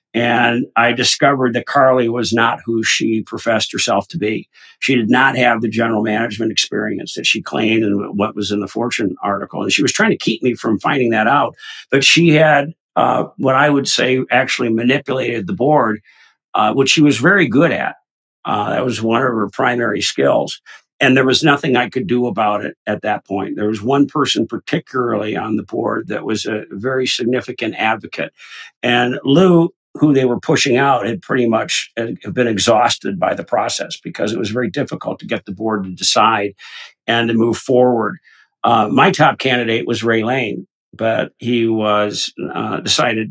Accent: American